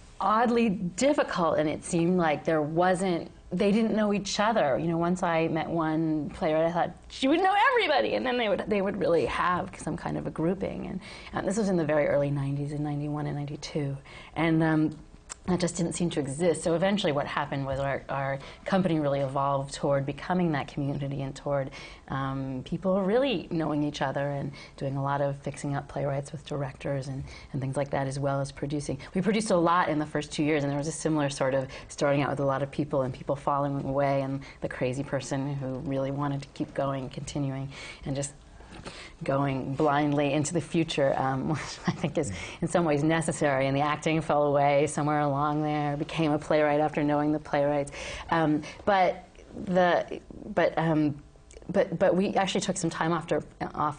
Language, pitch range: English, 140-165 Hz